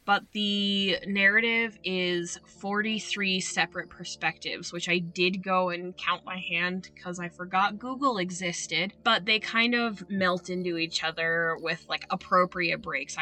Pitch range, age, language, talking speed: 175-195 Hz, 10-29, English, 145 wpm